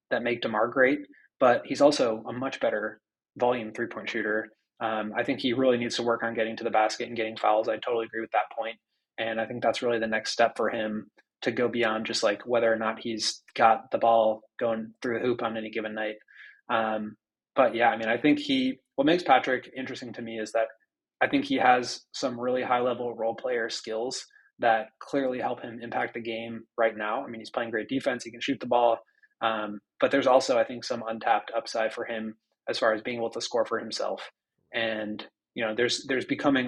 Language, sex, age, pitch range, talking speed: English, male, 20-39, 110-125 Hz, 225 wpm